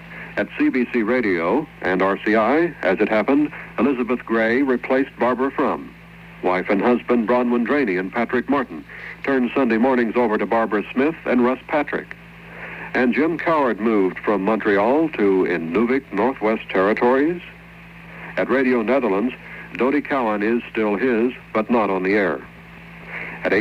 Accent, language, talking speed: American, Italian, 140 wpm